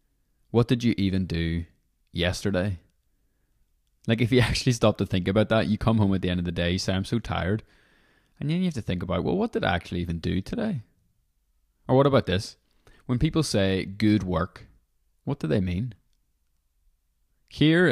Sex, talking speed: male, 195 wpm